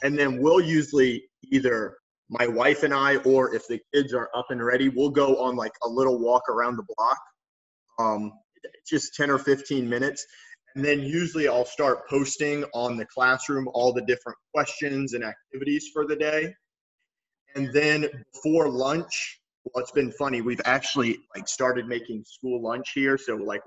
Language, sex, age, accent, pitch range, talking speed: English, male, 30-49, American, 125-150 Hz, 175 wpm